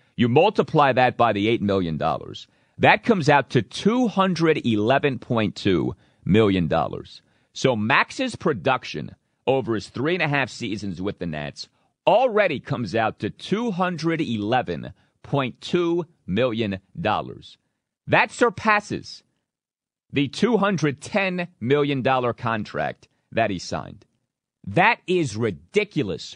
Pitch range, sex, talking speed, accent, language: 120-180 Hz, male, 100 wpm, American, English